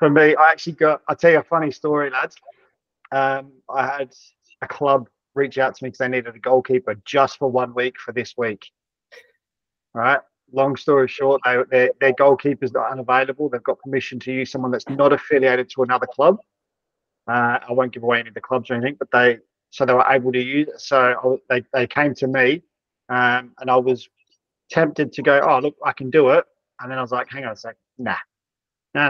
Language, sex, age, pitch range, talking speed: English, male, 30-49, 130-150 Hz, 210 wpm